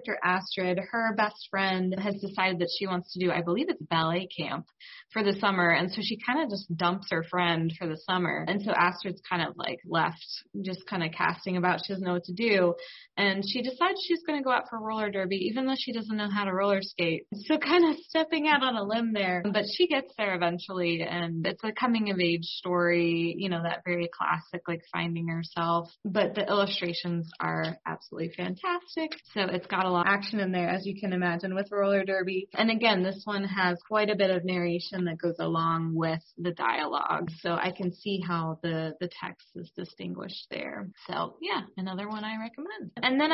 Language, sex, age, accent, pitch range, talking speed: English, female, 20-39, American, 175-215 Hz, 210 wpm